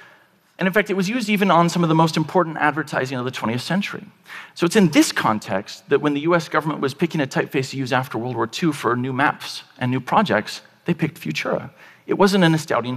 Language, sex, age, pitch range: Japanese, male, 40-59, 125-170 Hz